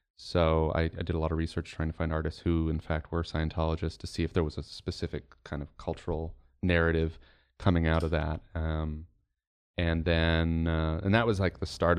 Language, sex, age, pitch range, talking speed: English, male, 30-49, 80-90 Hz, 210 wpm